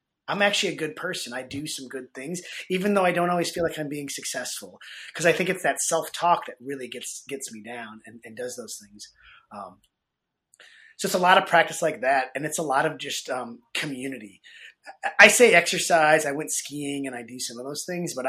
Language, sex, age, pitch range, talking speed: English, male, 30-49, 140-180 Hz, 225 wpm